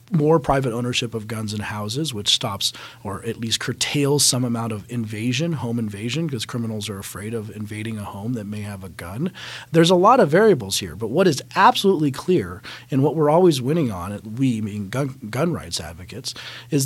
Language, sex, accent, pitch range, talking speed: English, male, American, 105-130 Hz, 195 wpm